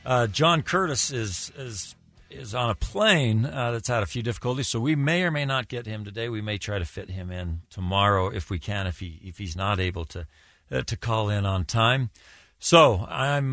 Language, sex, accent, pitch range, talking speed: English, male, American, 90-120 Hz, 220 wpm